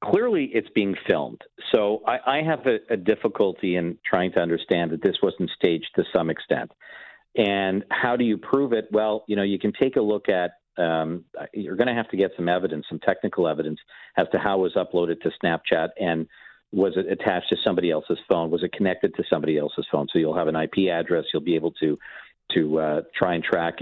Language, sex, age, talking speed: English, male, 50-69, 215 wpm